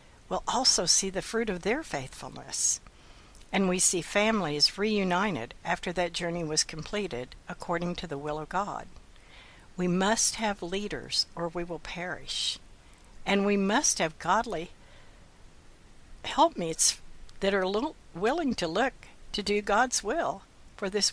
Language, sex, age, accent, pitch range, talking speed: English, female, 60-79, American, 150-210 Hz, 145 wpm